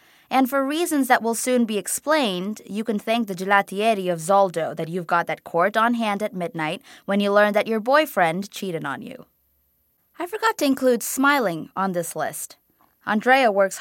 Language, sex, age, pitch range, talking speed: English, female, 20-39, 175-230 Hz, 185 wpm